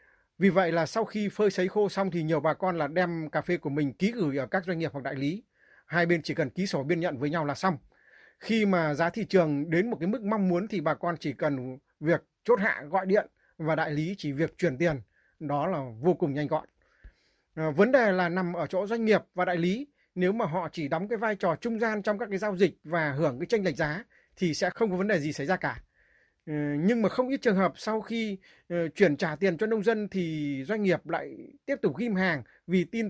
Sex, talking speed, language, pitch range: male, 255 wpm, Vietnamese, 160-210 Hz